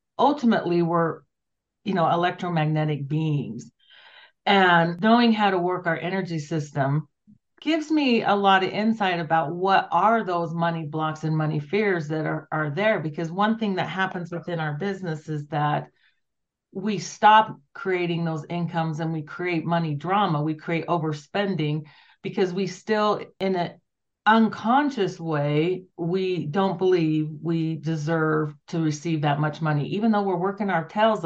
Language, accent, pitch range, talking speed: English, American, 155-195 Hz, 150 wpm